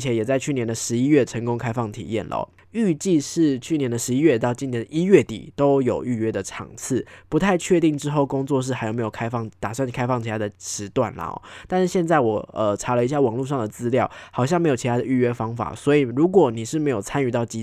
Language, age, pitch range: Chinese, 20-39, 115-145 Hz